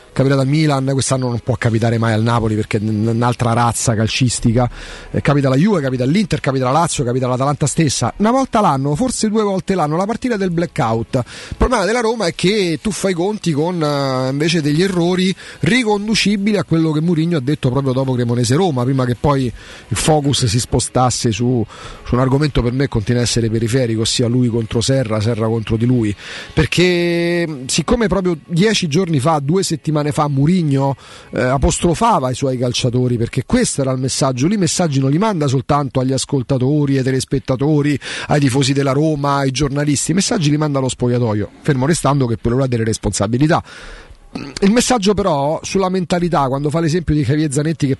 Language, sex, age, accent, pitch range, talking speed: Italian, male, 30-49, native, 125-175 Hz, 185 wpm